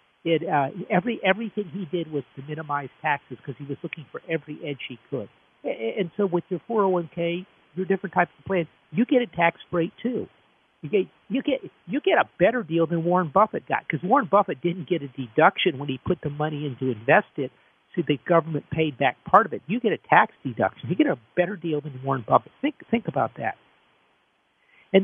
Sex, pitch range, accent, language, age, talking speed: male, 150-190 Hz, American, English, 50-69, 225 wpm